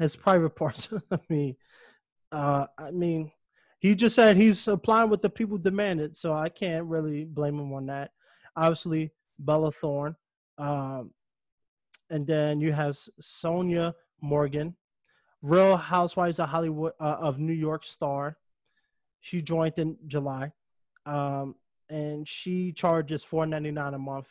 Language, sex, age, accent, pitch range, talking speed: English, male, 20-39, American, 145-170 Hz, 140 wpm